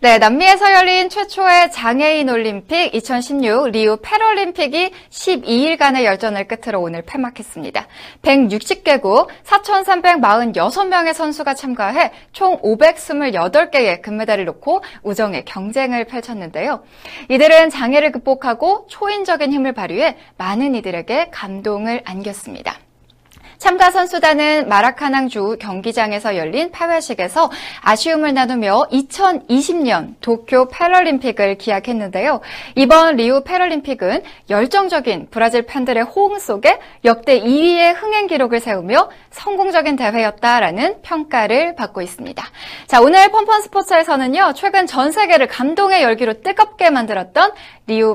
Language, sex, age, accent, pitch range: Korean, female, 20-39, native, 230-345 Hz